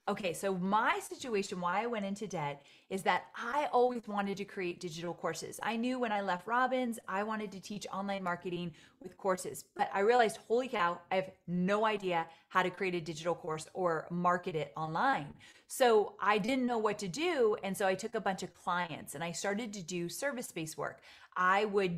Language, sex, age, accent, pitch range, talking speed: English, female, 30-49, American, 175-230 Hz, 205 wpm